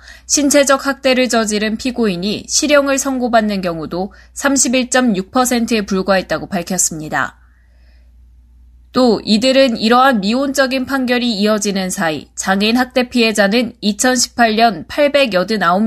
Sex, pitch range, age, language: female, 195-255 Hz, 20-39, Korean